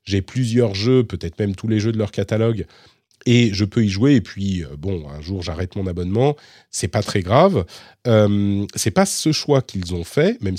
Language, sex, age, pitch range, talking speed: French, male, 40-59, 90-120 Hz, 220 wpm